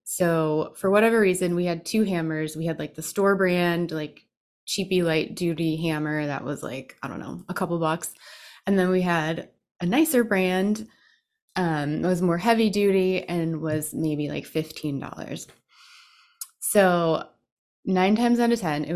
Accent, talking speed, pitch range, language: American, 170 wpm, 155-195 Hz, English